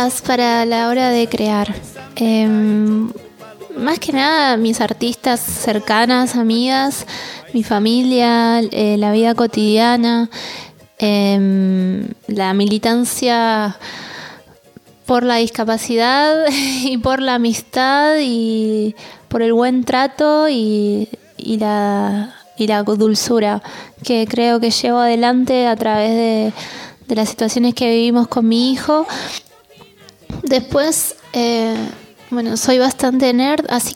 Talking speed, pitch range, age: 110 wpm, 220-250 Hz, 20-39